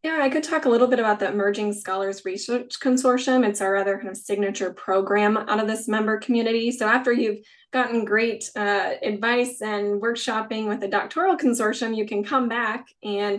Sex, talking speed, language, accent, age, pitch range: female, 195 wpm, English, American, 10-29, 205-240 Hz